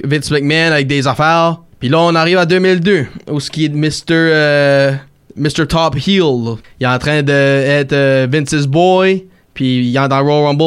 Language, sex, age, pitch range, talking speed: French, male, 20-39, 135-160 Hz, 185 wpm